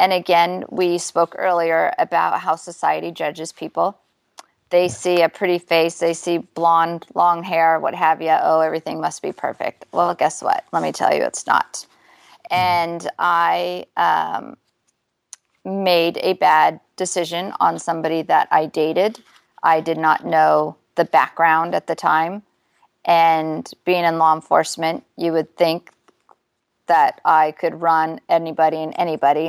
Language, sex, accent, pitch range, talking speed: English, female, American, 160-180 Hz, 150 wpm